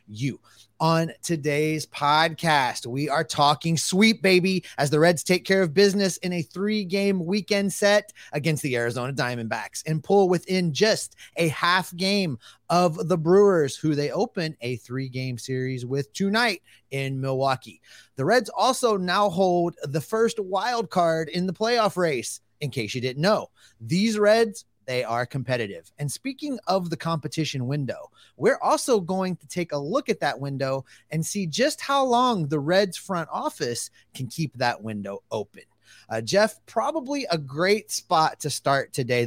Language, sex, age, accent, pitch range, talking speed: English, male, 30-49, American, 135-200 Hz, 165 wpm